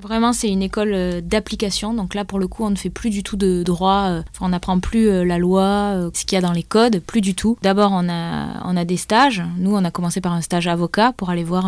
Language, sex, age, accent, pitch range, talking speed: French, female, 20-39, French, 175-205 Hz, 265 wpm